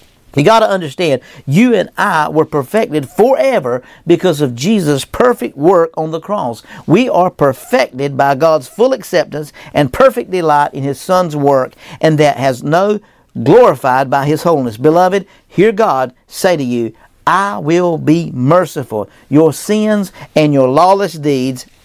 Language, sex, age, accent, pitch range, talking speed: English, male, 50-69, American, 135-175 Hz, 155 wpm